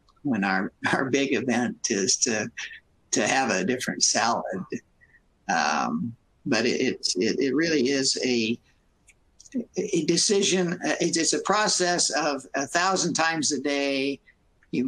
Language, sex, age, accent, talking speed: English, male, 60-79, American, 130 wpm